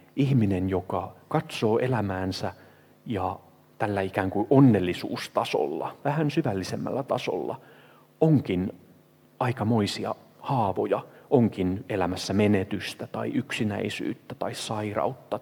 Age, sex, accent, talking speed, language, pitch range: 30-49, male, native, 85 wpm, Finnish, 95-125 Hz